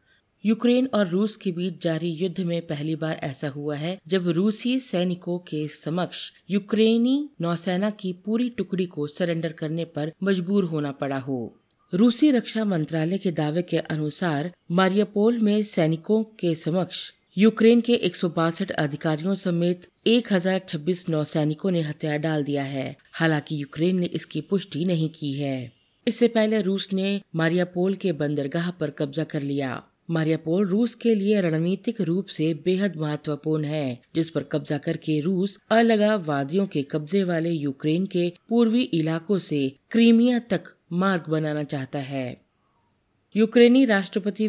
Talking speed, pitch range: 145 wpm, 155-200 Hz